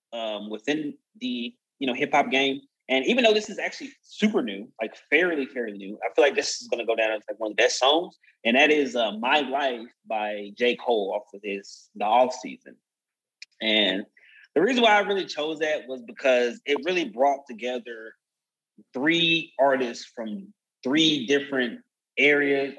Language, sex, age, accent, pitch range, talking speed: English, male, 20-39, American, 115-145 Hz, 185 wpm